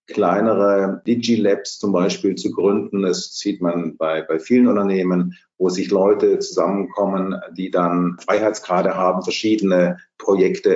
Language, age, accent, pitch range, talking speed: German, 50-69, German, 90-120 Hz, 130 wpm